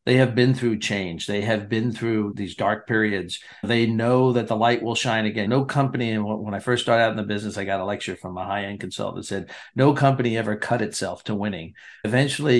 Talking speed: 235 wpm